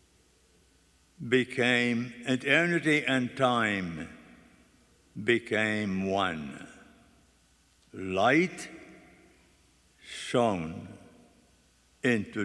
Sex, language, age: male, English, 60-79